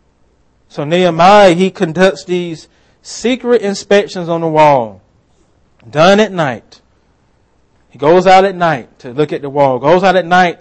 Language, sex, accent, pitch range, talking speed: English, male, American, 135-190 Hz, 155 wpm